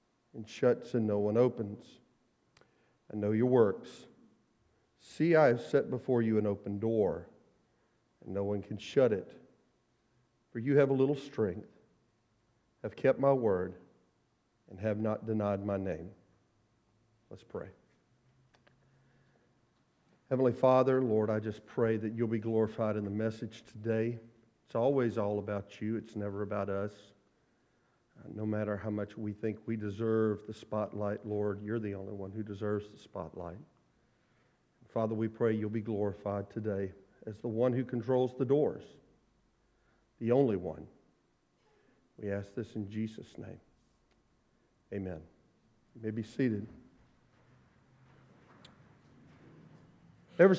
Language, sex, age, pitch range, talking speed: English, male, 40-59, 105-120 Hz, 135 wpm